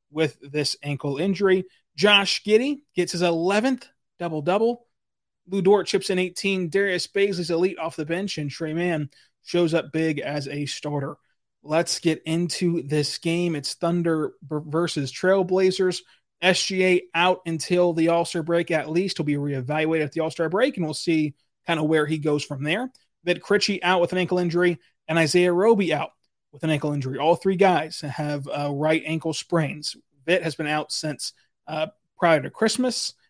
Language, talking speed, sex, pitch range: English, 180 wpm, male, 150-180 Hz